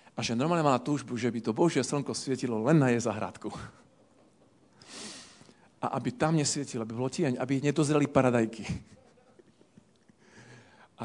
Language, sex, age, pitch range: Slovak, male, 40-59, 115-150 Hz